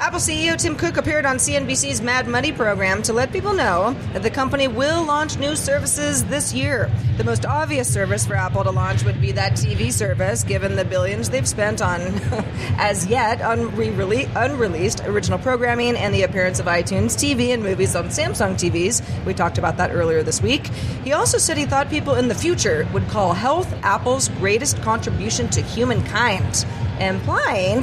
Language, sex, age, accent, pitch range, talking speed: English, female, 30-49, American, 110-130 Hz, 180 wpm